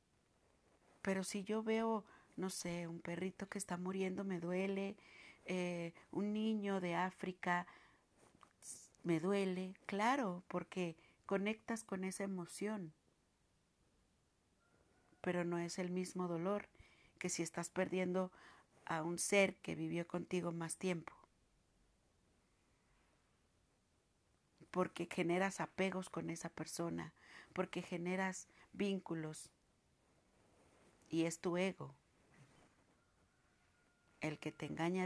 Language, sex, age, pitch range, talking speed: Spanish, female, 40-59, 165-195 Hz, 105 wpm